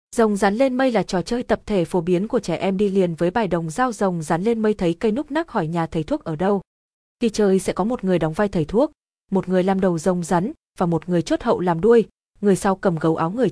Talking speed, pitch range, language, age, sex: 280 wpm, 180-235 Hz, Vietnamese, 20-39, female